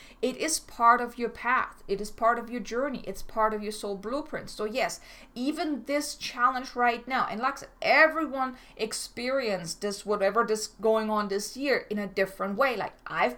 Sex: female